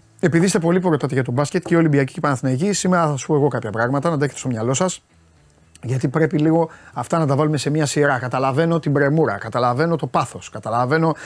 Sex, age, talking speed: male, 30-49, 220 wpm